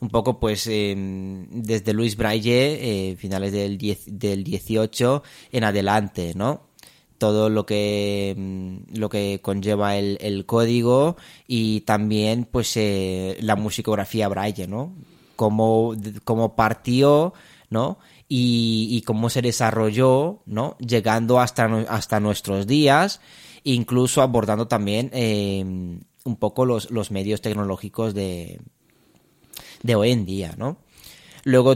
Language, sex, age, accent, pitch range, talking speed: Spanish, male, 30-49, Spanish, 105-125 Hz, 125 wpm